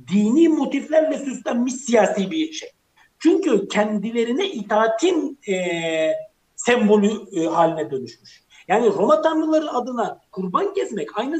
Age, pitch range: 60-79, 185-255 Hz